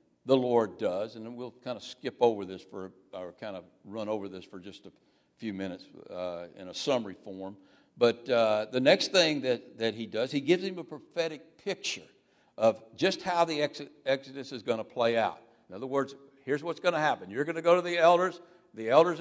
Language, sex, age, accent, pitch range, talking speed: English, male, 60-79, American, 125-175 Hz, 220 wpm